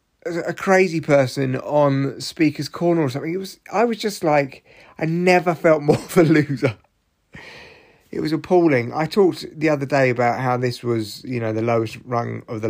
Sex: male